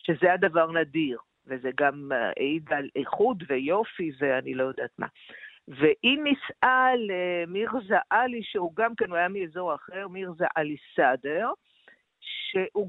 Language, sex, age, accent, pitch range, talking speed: Hebrew, female, 50-69, native, 150-210 Hz, 120 wpm